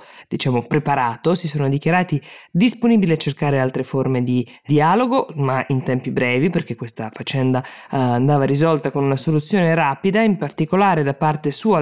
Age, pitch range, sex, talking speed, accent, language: 20-39, 130-155 Hz, female, 155 wpm, native, Italian